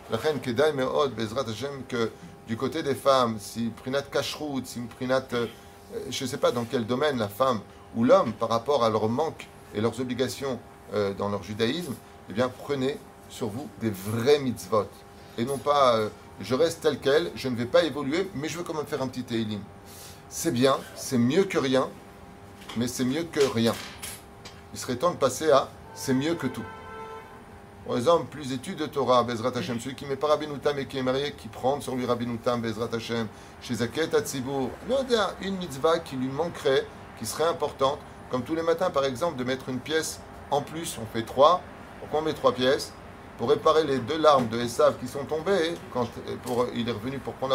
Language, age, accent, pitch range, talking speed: French, 30-49, French, 115-145 Hz, 200 wpm